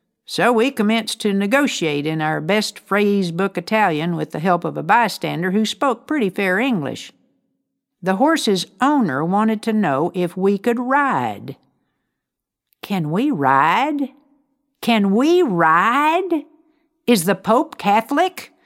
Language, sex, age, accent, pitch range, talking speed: English, female, 60-79, American, 165-245 Hz, 130 wpm